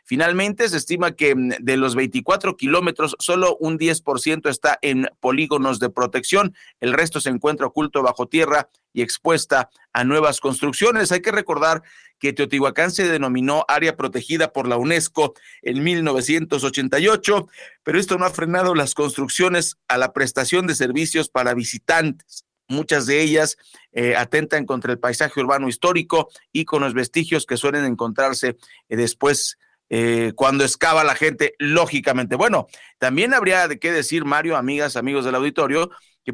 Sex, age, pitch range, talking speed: male, 50-69, 135-170 Hz, 155 wpm